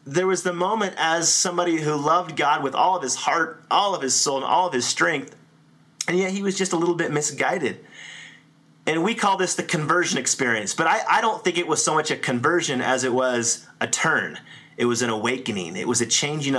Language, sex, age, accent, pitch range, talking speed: English, male, 30-49, American, 130-185 Hz, 230 wpm